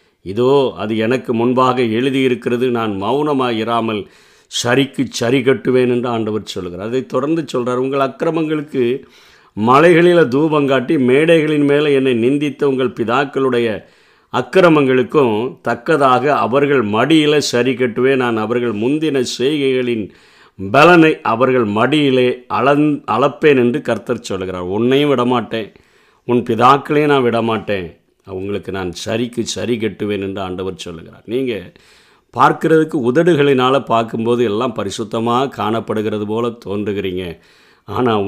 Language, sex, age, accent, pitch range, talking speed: Tamil, male, 50-69, native, 110-140 Hz, 110 wpm